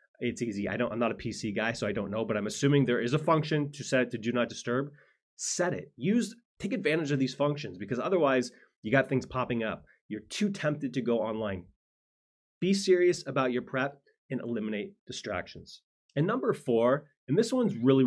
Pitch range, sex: 125-155 Hz, male